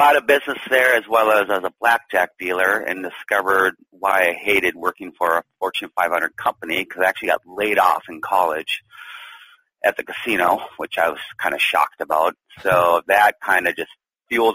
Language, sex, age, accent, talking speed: English, male, 30-49, American, 190 wpm